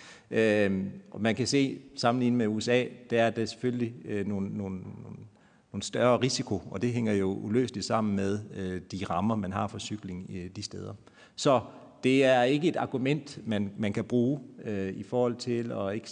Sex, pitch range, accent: male, 105-130 Hz, native